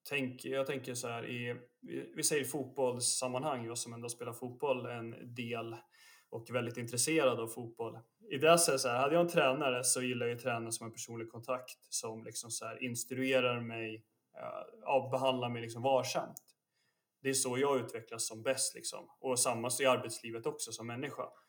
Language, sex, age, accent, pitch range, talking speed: Swedish, male, 20-39, native, 115-130 Hz, 195 wpm